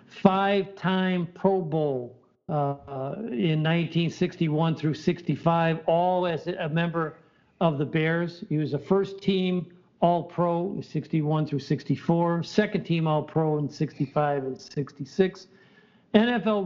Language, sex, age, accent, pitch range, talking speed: English, male, 60-79, American, 155-185 Hz, 120 wpm